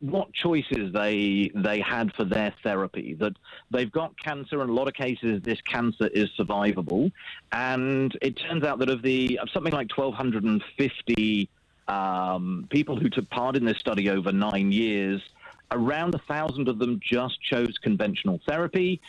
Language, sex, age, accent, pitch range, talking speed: English, male, 40-59, British, 115-150 Hz, 170 wpm